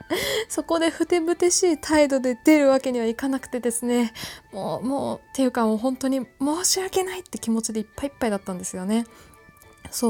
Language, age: Japanese, 20-39